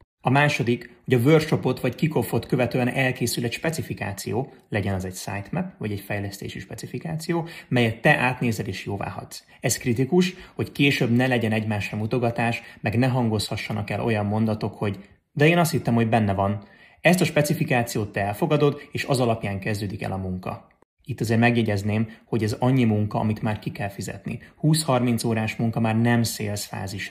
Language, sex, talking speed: Hungarian, male, 170 wpm